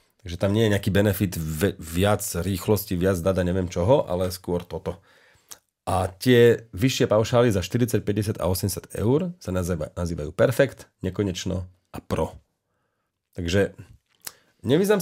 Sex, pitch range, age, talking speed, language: male, 90-120 Hz, 40-59, 130 wpm, English